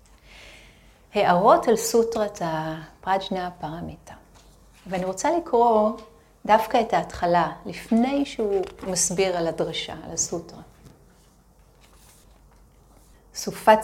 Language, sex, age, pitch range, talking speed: Hebrew, female, 40-59, 170-220 Hz, 80 wpm